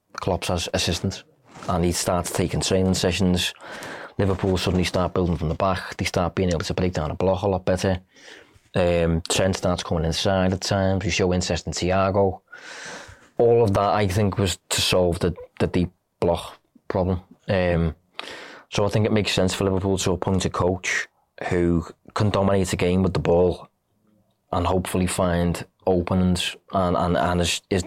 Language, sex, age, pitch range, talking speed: English, male, 20-39, 90-95 Hz, 180 wpm